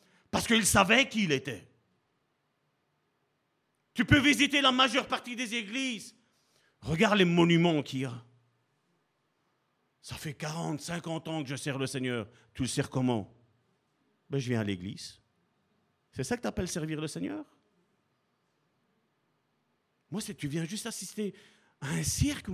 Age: 50-69